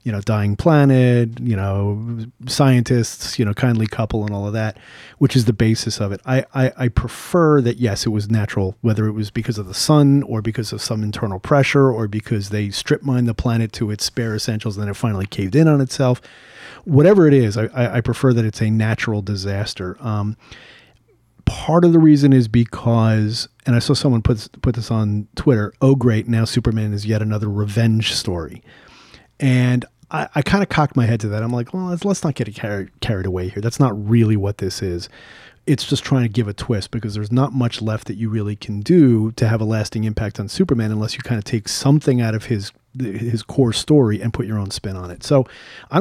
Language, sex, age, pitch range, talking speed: English, male, 30-49, 110-130 Hz, 225 wpm